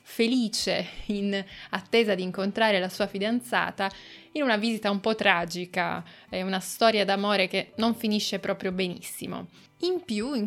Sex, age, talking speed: female, 20-39, 150 wpm